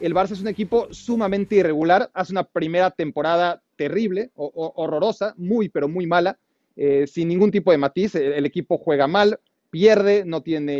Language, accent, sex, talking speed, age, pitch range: Spanish, Mexican, male, 185 wpm, 40-59, 170-215 Hz